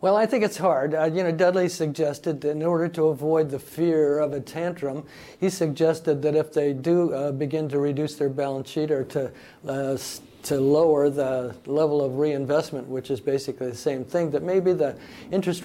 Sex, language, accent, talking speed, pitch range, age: male, English, American, 205 wpm, 135-160 Hz, 50-69